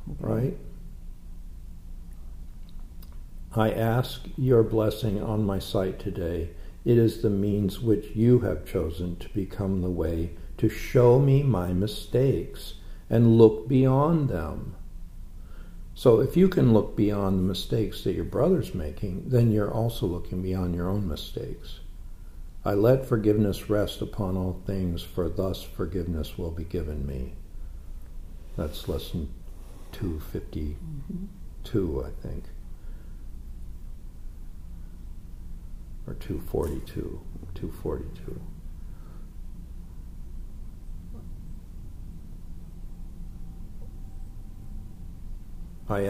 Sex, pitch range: male, 85-105 Hz